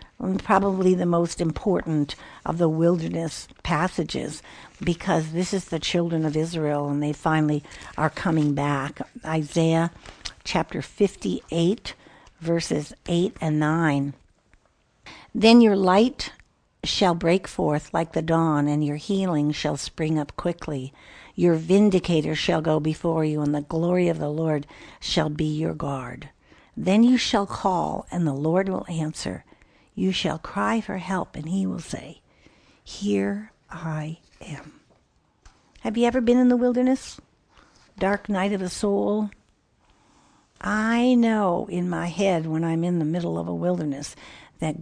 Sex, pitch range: female, 150-185 Hz